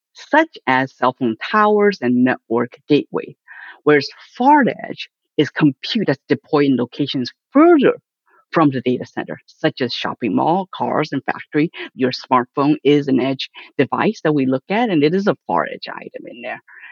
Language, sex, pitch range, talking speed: English, female, 130-200 Hz, 170 wpm